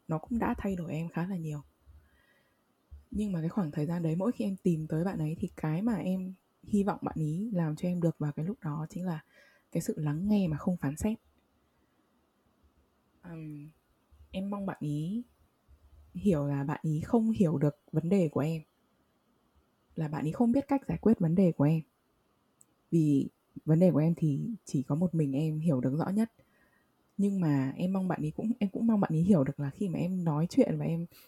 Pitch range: 150-195 Hz